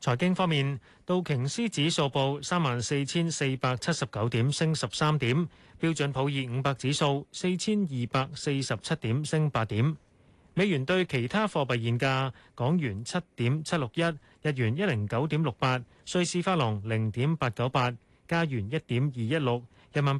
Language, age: Chinese, 30-49